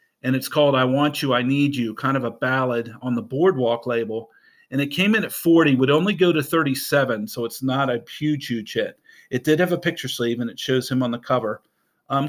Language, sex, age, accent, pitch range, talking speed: English, male, 40-59, American, 120-155 Hz, 240 wpm